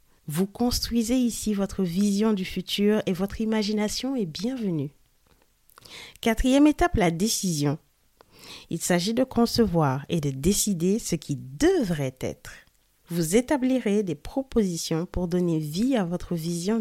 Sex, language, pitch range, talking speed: female, French, 170-225 Hz, 130 wpm